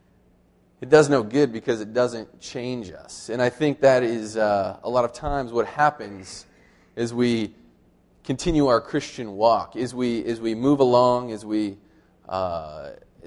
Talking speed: 165 wpm